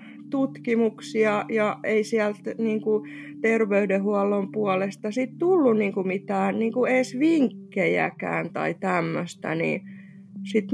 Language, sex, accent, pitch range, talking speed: Finnish, female, native, 180-225 Hz, 100 wpm